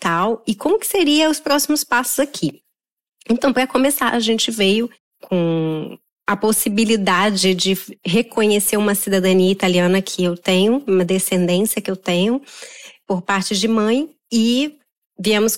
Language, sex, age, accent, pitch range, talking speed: Portuguese, female, 20-39, Brazilian, 195-255 Hz, 145 wpm